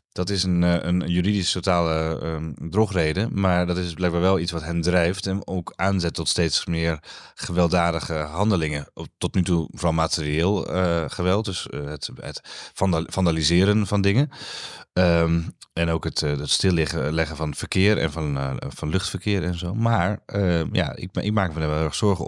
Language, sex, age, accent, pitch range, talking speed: Dutch, male, 30-49, Dutch, 75-95 Hz, 170 wpm